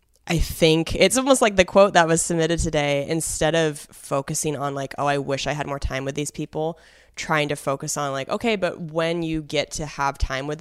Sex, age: female, 20-39